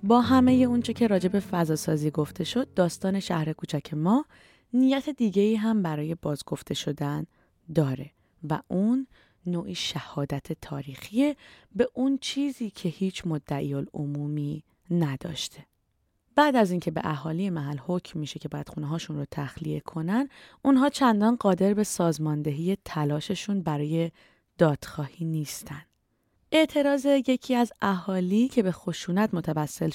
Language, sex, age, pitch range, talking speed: Persian, female, 20-39, 150-215 Hz, 130 wpm